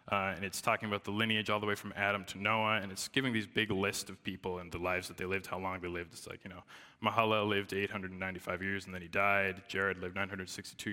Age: 20-39